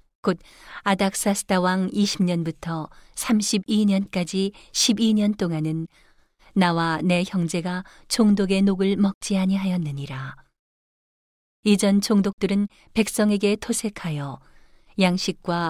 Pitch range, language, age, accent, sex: 170-205 Hz, Korean, 40-59, native, female